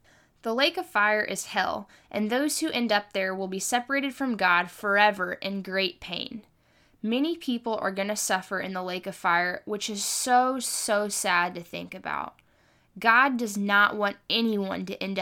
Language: English